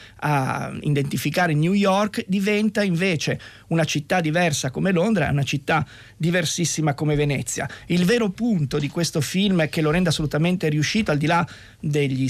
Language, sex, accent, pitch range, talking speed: Italian, male, native, 150-215 Hz, 155 wpm